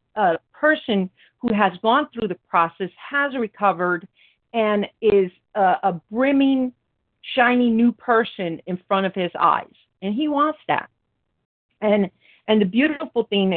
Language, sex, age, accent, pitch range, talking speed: English, female, 40-59, American, 185-240 Hz, 140 wpm